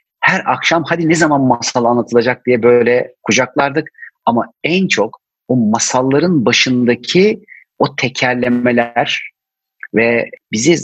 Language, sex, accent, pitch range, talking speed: Turkish, male, native, 115-155 Hz, 110 wpm